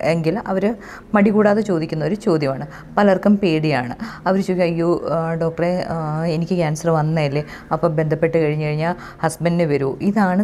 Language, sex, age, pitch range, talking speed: Malayalam, female, 20-39, 160-200 Hz, 120 wpm